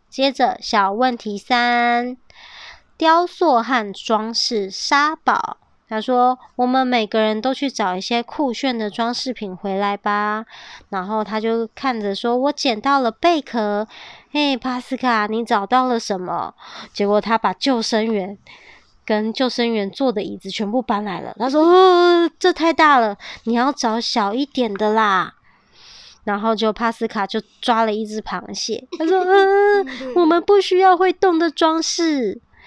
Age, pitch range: 20-39, 215-280 Hz